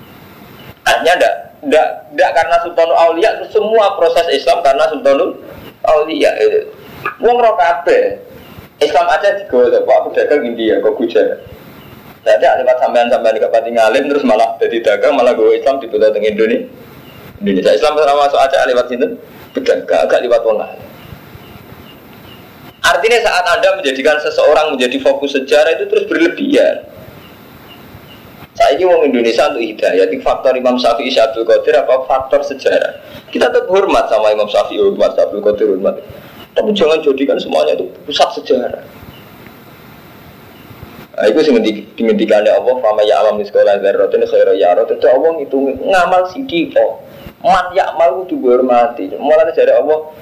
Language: Indonesian